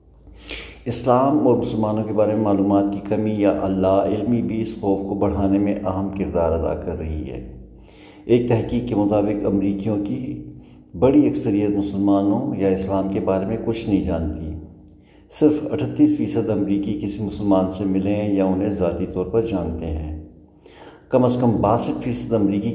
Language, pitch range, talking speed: Urdu, 95-110 Hz, 165 wpm